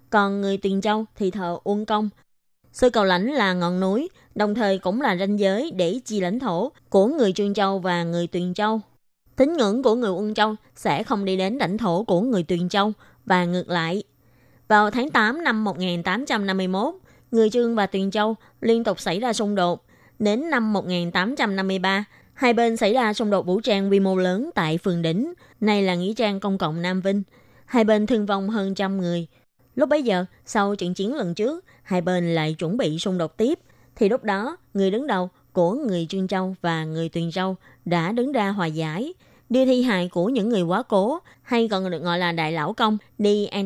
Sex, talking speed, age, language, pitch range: female, 210 wpm, 20-39, Vietnamese, 180-225 Hz